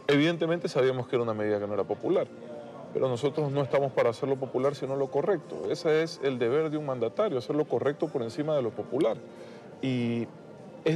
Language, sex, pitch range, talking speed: Spanish, male, 125-160 Hz, 210 wpm